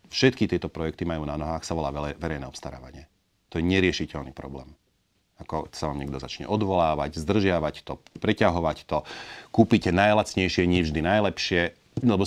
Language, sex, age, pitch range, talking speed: Slovak, male, 40-59, 75-95 Hz, 145 wpm